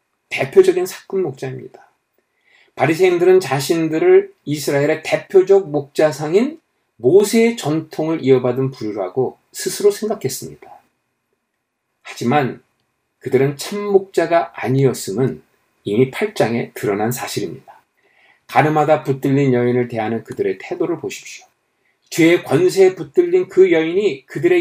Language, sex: Korean, male